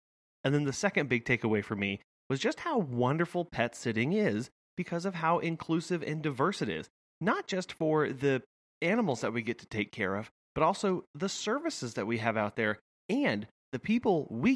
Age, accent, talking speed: 30-49, American, 200 wpm